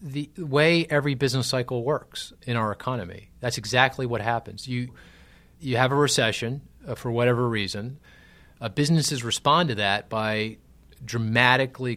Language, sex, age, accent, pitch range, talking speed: English, male, 30-49, American, 105-125 Hz, 145 wpm